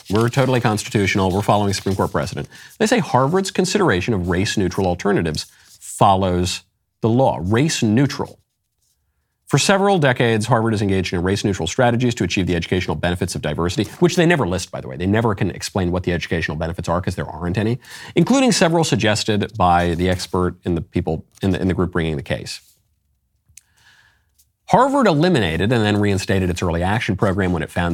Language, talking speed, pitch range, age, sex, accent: English, 175 wpm, 90-115 Hz, 40-59, male, American